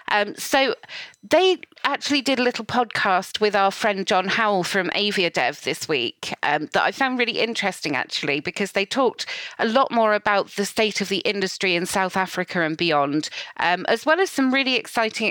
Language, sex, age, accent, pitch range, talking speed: English, female, 40-59, British, 190-240 Hz, 190 wpm